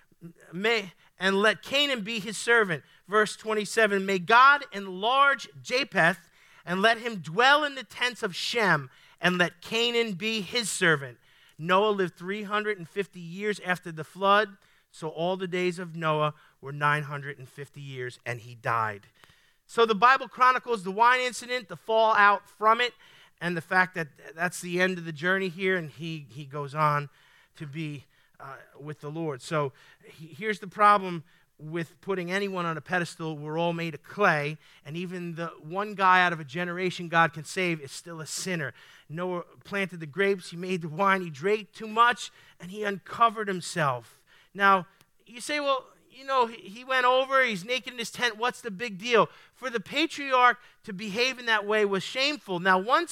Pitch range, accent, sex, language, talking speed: 165-225 Hz, American, male, English, 180 wpm